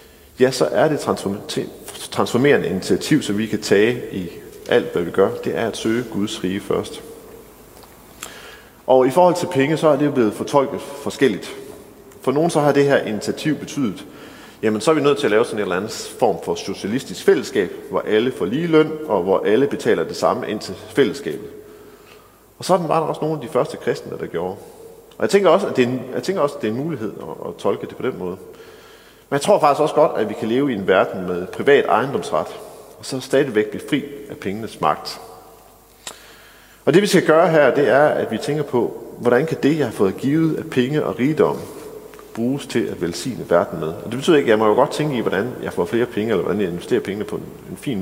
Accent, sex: Danish, male